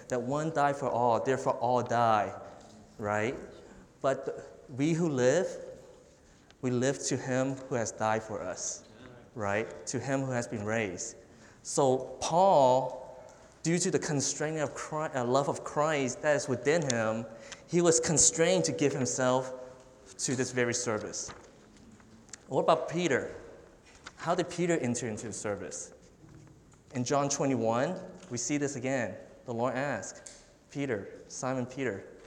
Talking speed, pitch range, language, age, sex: 145 wpm, 105-135 Hz, English, 20-39, male